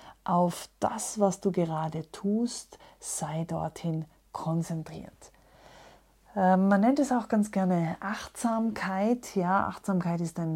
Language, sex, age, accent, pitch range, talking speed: German, female, 30-49, German, 160-195 Hz, 115 wpm